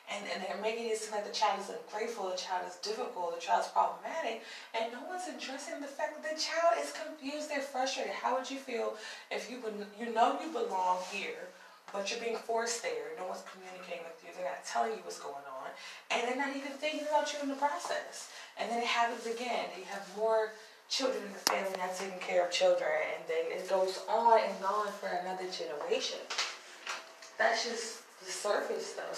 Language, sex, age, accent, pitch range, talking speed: English, female, 20-39, American, 190-265 Hz, 210 wpm